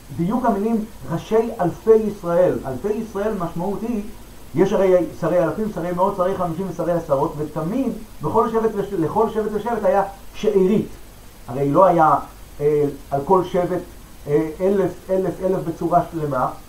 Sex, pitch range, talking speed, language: male, 160-220 Hz, 135 wpm, Hebrew